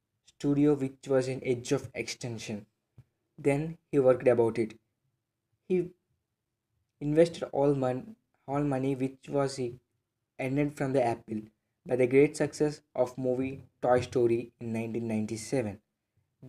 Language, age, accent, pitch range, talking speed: English, 20-39, Indian, 115-140 Hz, 125 wpm